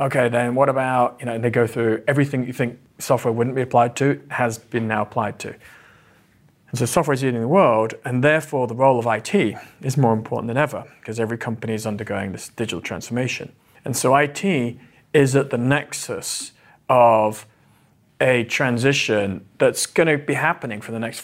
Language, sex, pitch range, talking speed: English, male, 115-140 Hz, 185 wpm